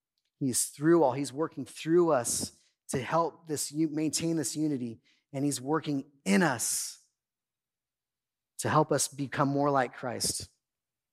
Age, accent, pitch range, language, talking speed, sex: 30-49, American, 145-195 Hz, English, 135 wpm, male